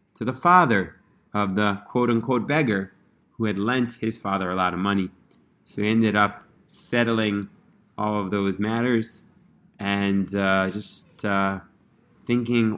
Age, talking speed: 30-49, 140 wpm